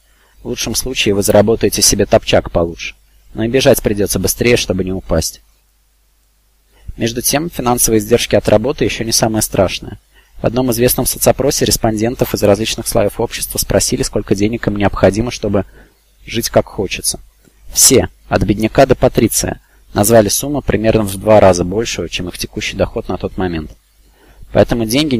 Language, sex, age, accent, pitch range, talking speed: Russian, male, 20-39, native, 100-120 Hz, 155 wpm